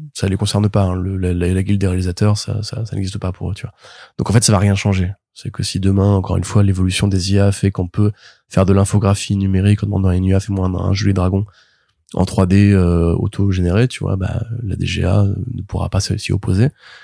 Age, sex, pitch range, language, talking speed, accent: 20-39, male, 95-115 Hz, French, 240 wpm, French